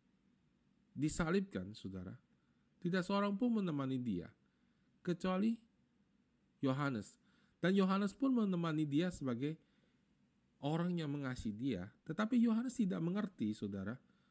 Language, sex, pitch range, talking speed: Indonesian, male, 135-195 Hz, 100 wpm